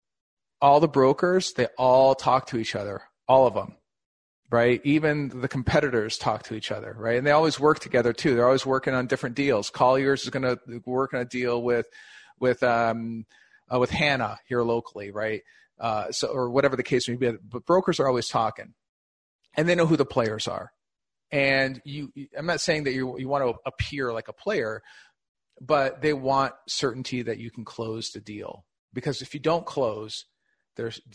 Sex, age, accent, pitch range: male, 40-59, American, 115-140 Hz